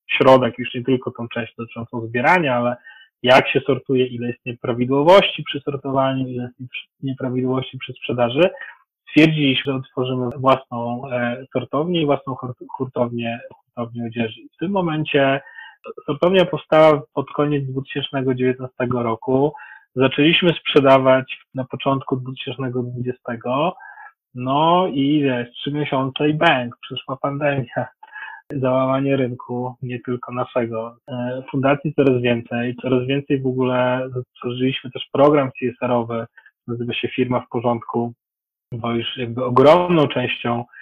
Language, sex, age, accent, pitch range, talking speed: Polish, male, 30-49, native, 125-140 Hz, 120 wpm